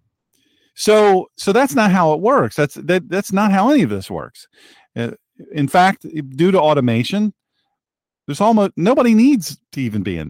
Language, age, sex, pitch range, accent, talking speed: English, 40-59, male, 120-170 Hz, American, 170 wpm